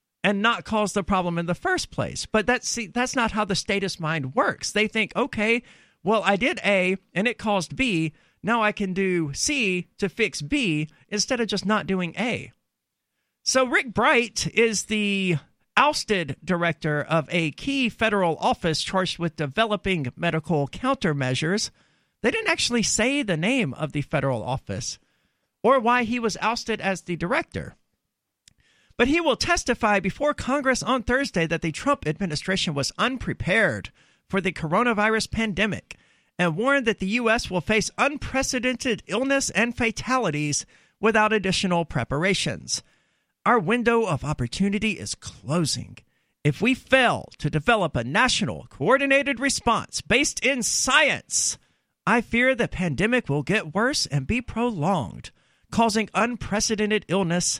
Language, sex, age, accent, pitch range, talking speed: English, male, 50-69, American, 170-235 Hz, 150 wpm